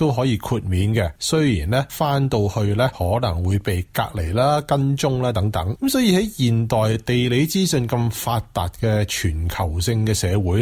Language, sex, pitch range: Chinese, male, 95-140 Hz